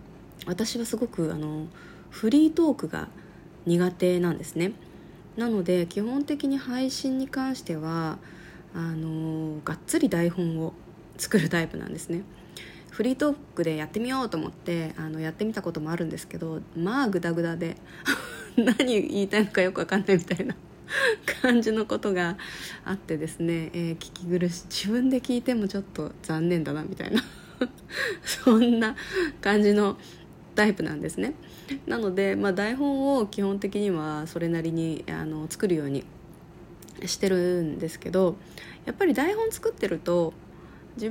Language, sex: Japanese, female